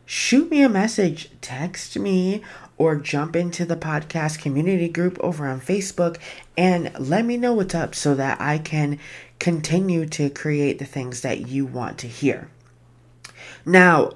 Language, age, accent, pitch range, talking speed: English, 20-39, American, 135-170 Hz, 155 wpm